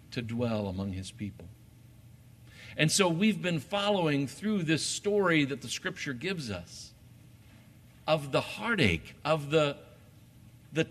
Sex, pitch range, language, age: male, 115-155 Hz, English, 60-79